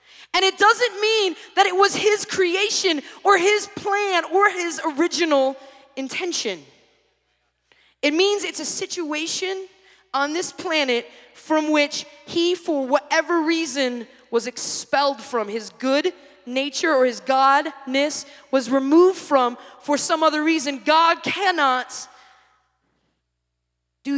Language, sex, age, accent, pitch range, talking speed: English, female, 20-39, American, 265-360 Hz, 120 wpm